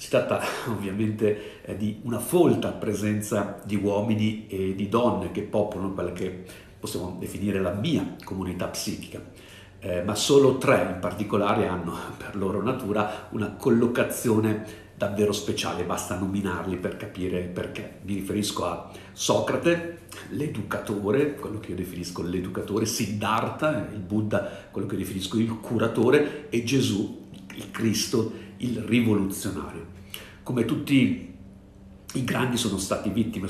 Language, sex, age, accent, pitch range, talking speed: Italian, male, 50-69, native, 95-110 Hz, 130 wpm